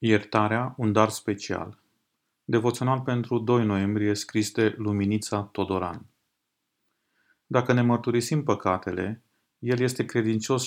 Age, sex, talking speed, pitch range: 30-49, male, 100 wpm, 105-120 Hz